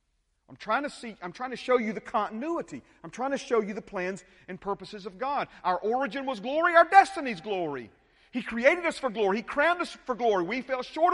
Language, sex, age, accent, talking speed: English, male, 40-59, American, 225 wpm